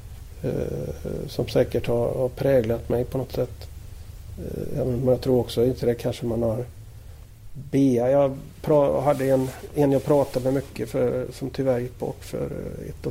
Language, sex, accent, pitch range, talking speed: Swedish, male, native, 100-125 Hz, 155 wpm